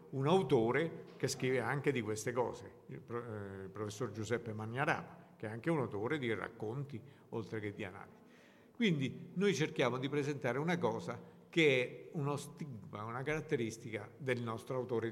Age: 50-69